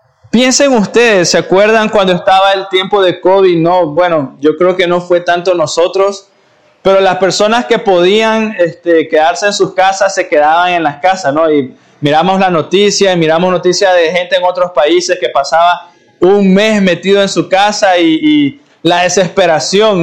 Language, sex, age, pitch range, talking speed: Spanish, male, 20-39, 180-235 Hz, 170 wpm